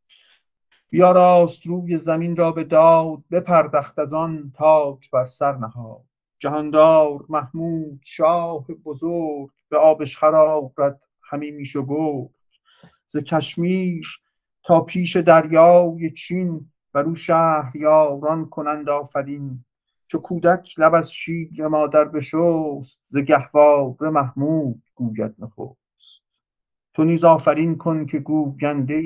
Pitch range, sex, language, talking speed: 135-165 Hz, male, English, 110 wpm